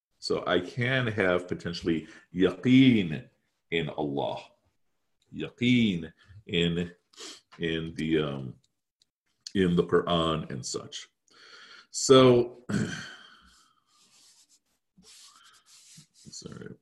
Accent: American